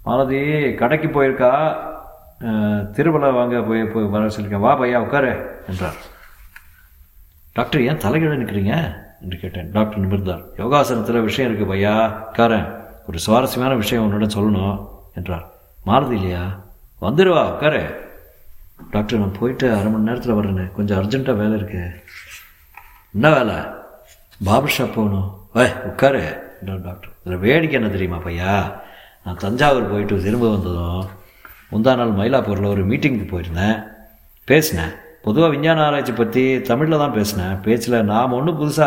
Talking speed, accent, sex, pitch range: 120 wpm, native, male, 95-120 Hz